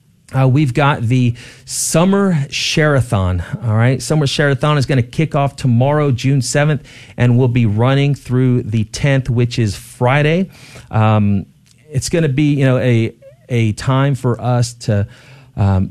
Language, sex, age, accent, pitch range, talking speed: English, male, 40-59, American, 115-140 Hz, 160 wpm